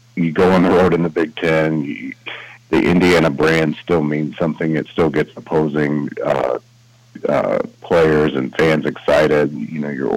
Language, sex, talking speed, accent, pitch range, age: English, male, 170 wpm, American, 75-90 Hz, 40-59